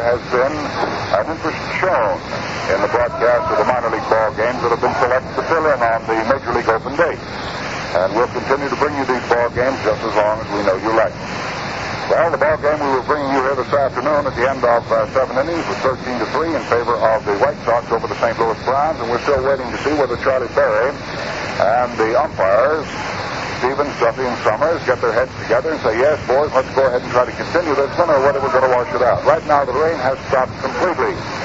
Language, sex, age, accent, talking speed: English, male, 60-79, American, 240 wpm